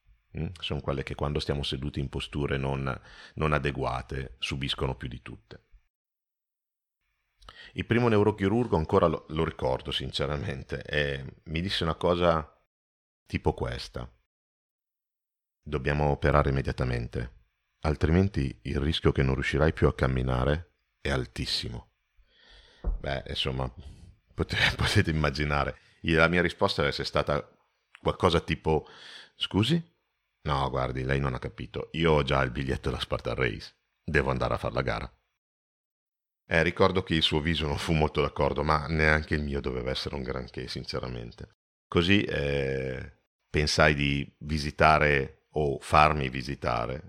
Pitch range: 65-80 Hz